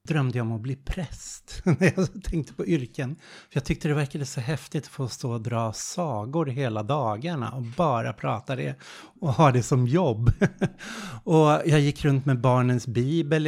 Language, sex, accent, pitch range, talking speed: Swedish, male, native, 120-145 Hz, 190 wpm